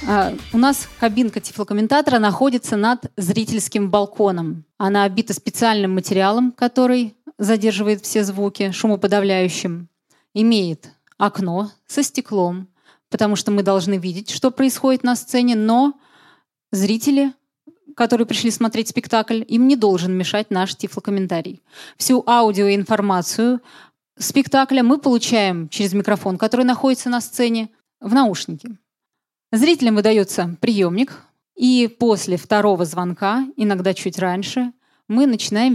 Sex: female